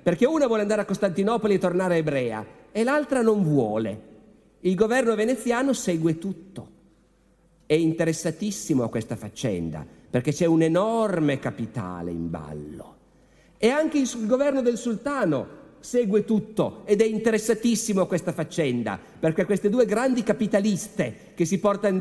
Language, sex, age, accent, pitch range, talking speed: Italian, male, 50-69, native, 130-210 Hz, 145 wpm